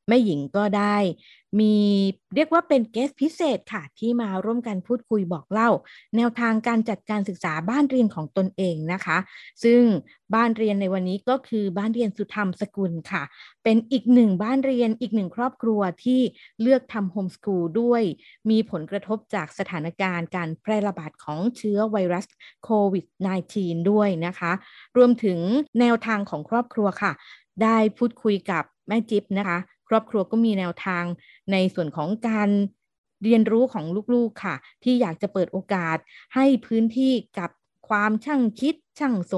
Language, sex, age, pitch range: Thai, female, 30-49, 185-235 Hz